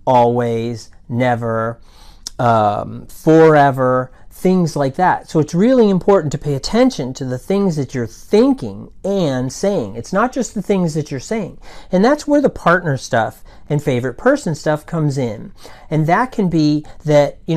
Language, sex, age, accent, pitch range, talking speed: English, male, 40-59, American, 130-185 Hz, 165 wpm